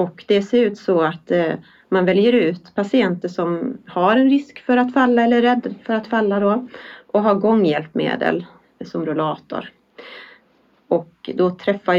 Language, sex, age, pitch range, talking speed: Swedish, female, 30-49, 175-225 Hz, 155 wpm